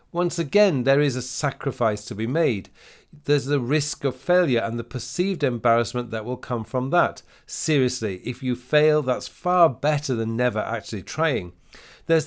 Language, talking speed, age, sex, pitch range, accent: English, 170 wpm, 40-59, male, 115-150 Hz, British